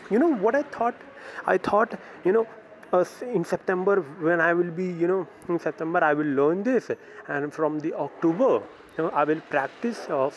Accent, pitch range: Indian, 165-215 Hz